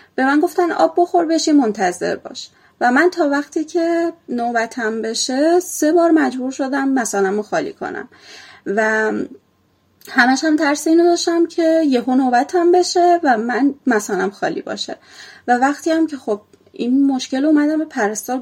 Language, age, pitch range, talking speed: Persian, 30-49, 220-310 Hz, 155 wpm